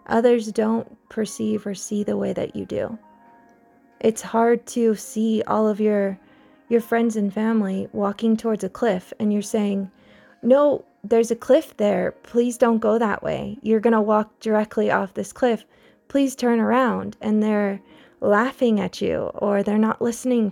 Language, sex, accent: English, female, American